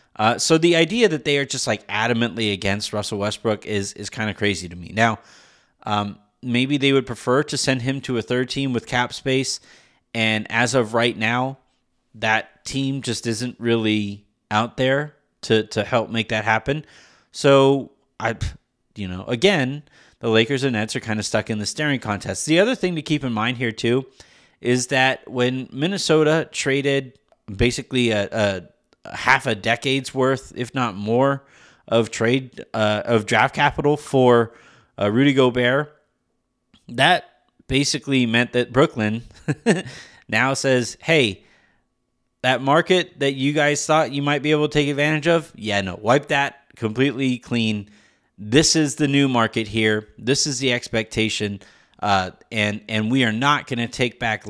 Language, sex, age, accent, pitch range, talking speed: English, male, 30-49, American, 110-140 Hz, 170 wpm